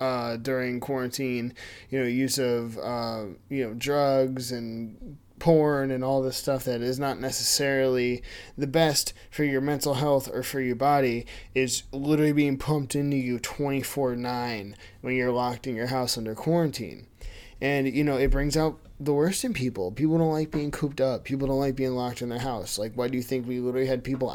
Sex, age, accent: male, 20-39, American